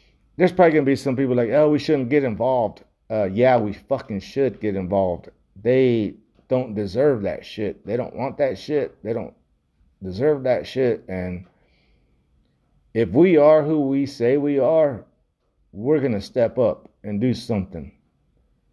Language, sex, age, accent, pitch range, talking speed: English, male, 50-69, American, 95-130 Hz, 165 wpm